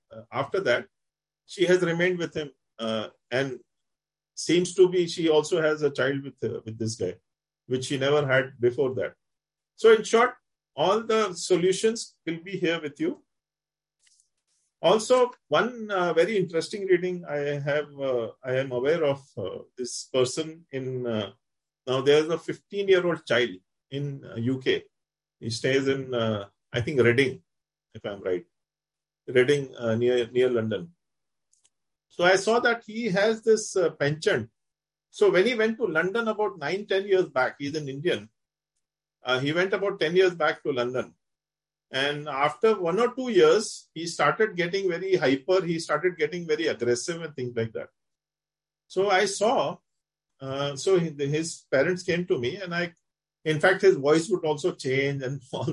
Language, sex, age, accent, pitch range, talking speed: English, male, 40-59, Indian, 135-190 Hz, 165 wpm